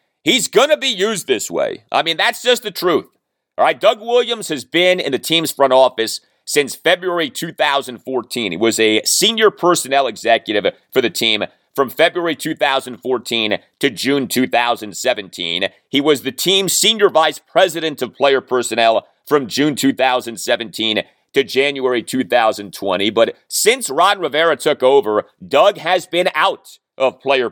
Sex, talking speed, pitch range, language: male, 155 wpm, 125-185 Hz, English